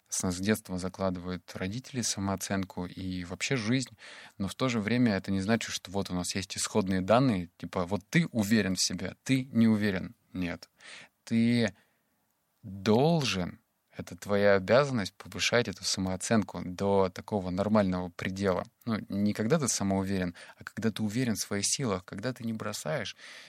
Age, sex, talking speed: 20-39, male, 155 wpm